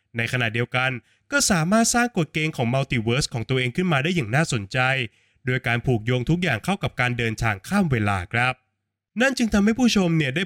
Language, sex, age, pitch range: Thai, male, 20-39, 120-160 Hz